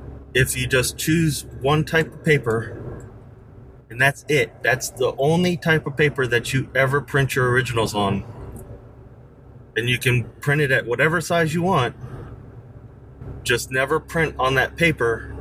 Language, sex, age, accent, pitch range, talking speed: English, male, 30-49, American, 115-135 Hz, 155 wpm